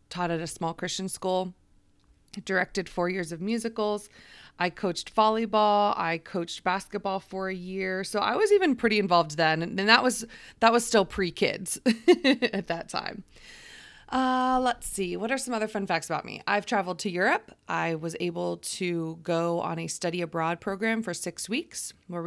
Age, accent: 30-49, American